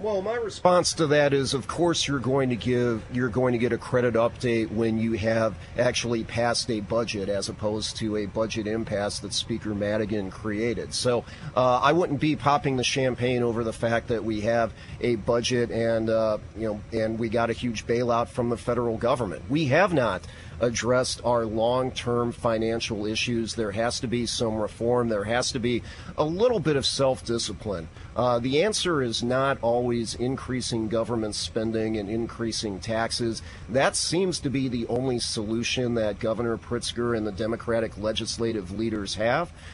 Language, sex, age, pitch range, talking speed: English, male, 40-59, 110-125 Hz, 175 wpm